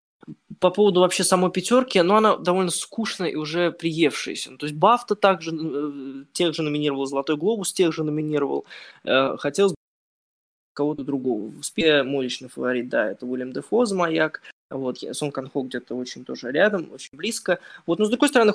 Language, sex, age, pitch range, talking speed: Ukrainian, male, 20-39, 140-180 Hz, 170 wpm